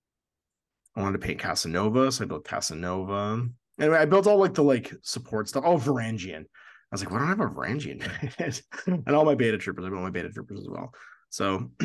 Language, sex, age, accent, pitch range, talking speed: English, male, 30-49, American, 100-145 Hz, 215 wpm